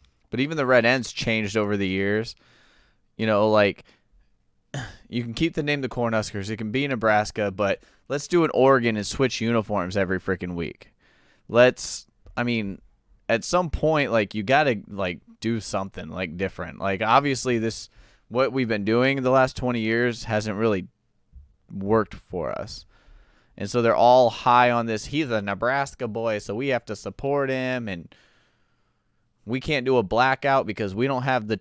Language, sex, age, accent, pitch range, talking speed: English, male, 20-39, American, 100-125 Hz, 175 wpm